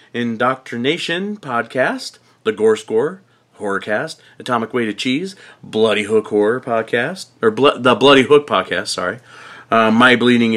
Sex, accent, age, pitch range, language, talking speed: male, American, 40-59, 120-170 Hz, English, 135 wpm